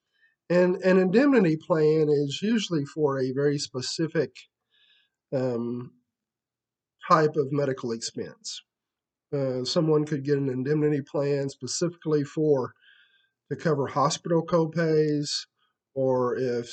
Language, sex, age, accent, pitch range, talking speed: English, male, 50-69, American, 135-175 Hz, 110 wpm